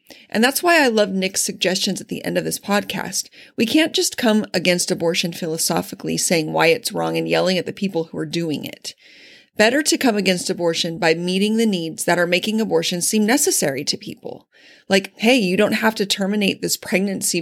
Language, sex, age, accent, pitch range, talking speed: English, female, 30-49, American, 175-230 Hz, 205 wpm